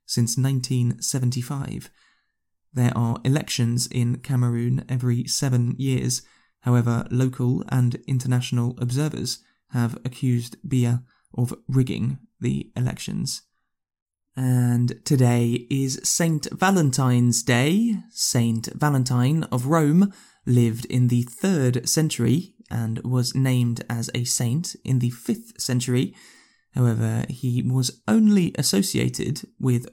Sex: male